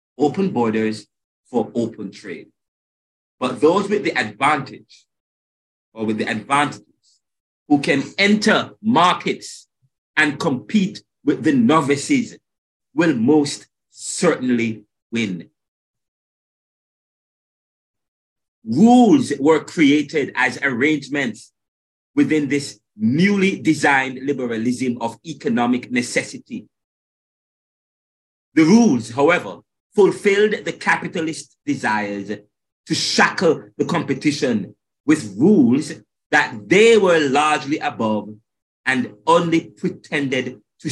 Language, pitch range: English, 105-170 Hz